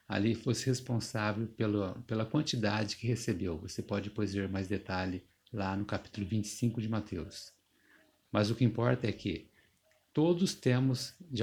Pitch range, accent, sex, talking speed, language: 105-120 Hz, Brazilian, male, 150 wpm, Portuguese